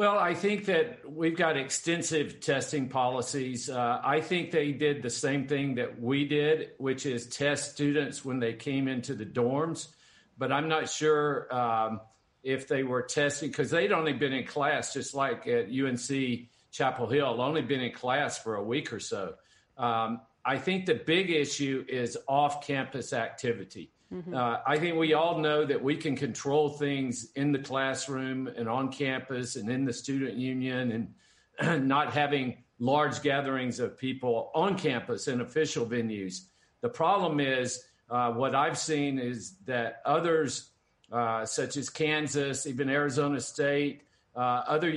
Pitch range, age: 125-150 Hz, 50-69